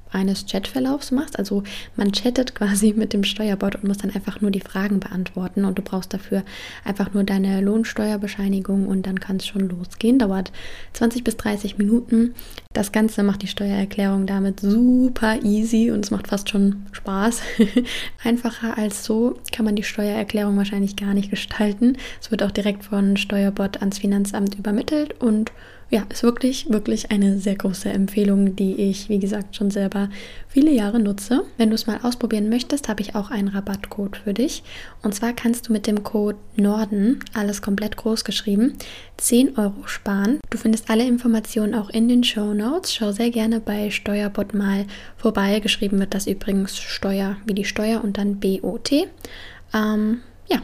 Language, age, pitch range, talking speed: German, 20-39, 200-230 Hz, 170 wpm